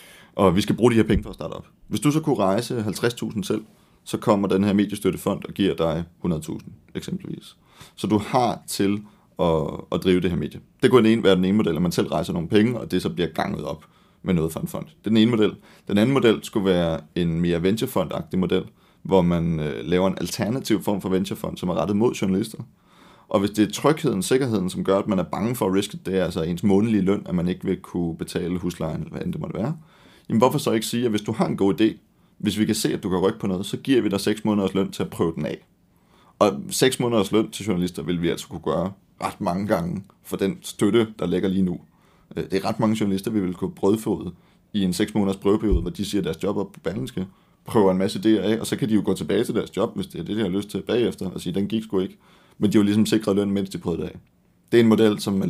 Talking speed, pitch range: 270 wpm, 95-110 Hz